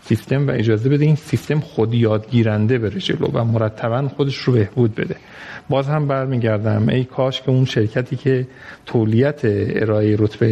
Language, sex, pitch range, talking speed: Persian, male, 110-135 Hz, 160 wpm